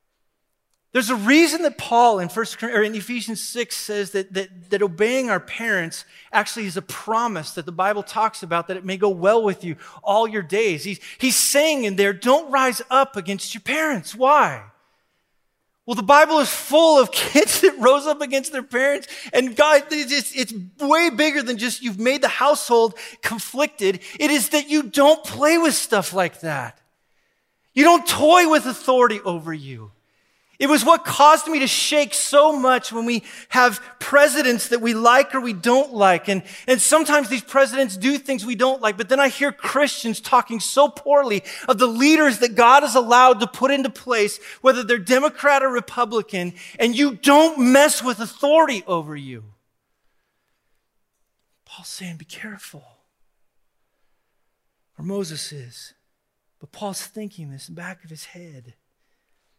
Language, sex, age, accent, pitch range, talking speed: English, male, 30-49, American, 195-280 Hz, 165 wpm